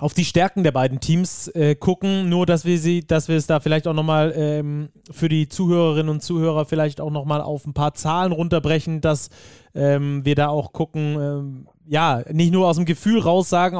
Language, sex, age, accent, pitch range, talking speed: German, male, 20-39, German, 145-175 Hz, 200 wpm